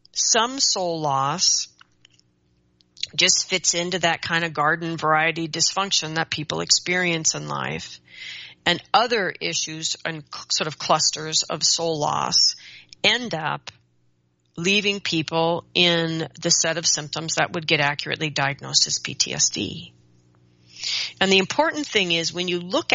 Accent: American